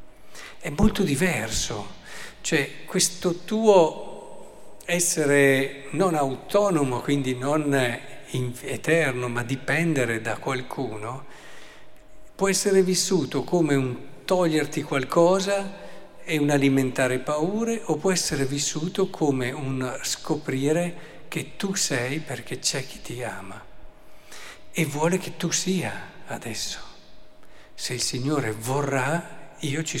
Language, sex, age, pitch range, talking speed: Italian, male, 50-69, 125-165 Hz, 110 wpm